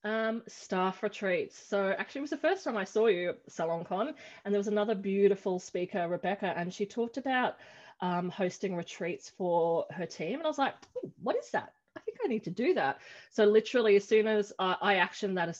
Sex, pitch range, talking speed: female, 180-220 Hz, 215 wpm